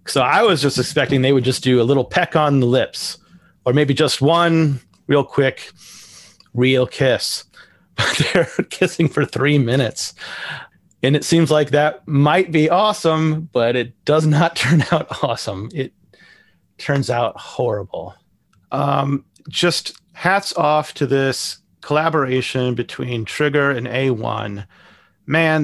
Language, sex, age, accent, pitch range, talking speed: English, male, 30-49, American, 120-150 Hz, 140 wpm